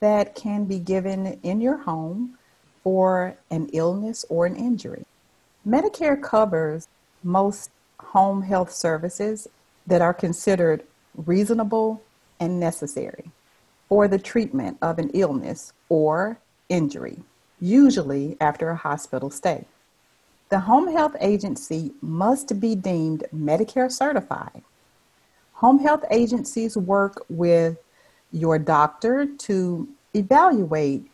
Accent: American